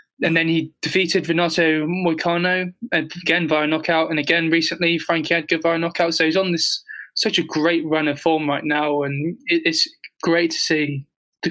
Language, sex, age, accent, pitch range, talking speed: English, male, 20-39, British, 155-170 Hz, 175 wpm